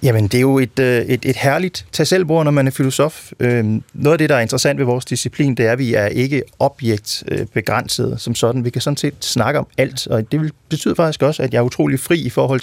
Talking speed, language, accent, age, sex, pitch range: 265 wpm, Danish, native, 30-49, male, 110-135 Hz